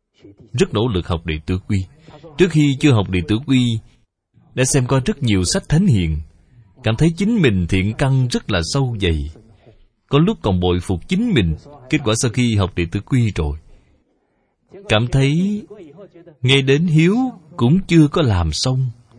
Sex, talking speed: male, 180 wpm